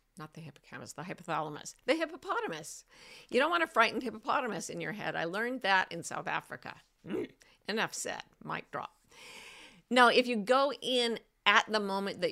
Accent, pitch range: American, 170-240 Hz